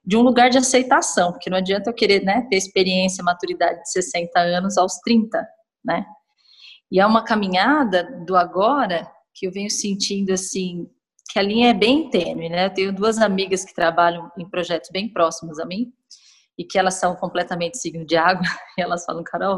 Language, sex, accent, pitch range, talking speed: Portuguese, female, Brazilian, 185-240 Hz, 190 wpm